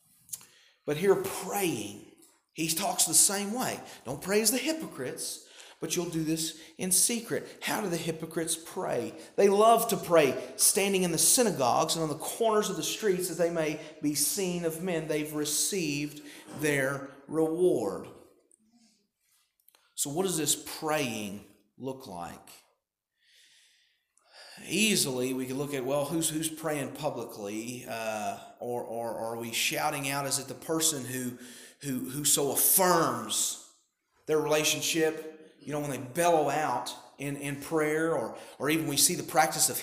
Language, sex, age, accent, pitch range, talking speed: English, male, 40-59, American, 140-175 Hz, 155 wpm